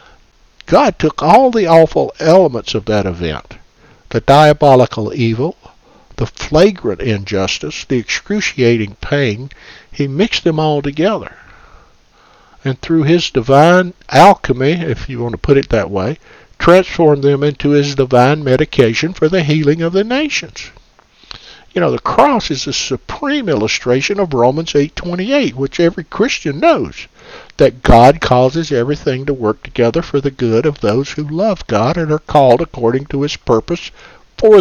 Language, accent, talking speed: English, American, 150 wpm